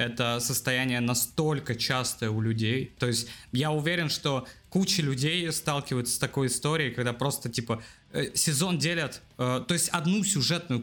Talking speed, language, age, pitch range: 155 wpm, Russian, 20-39, 130-180 Hz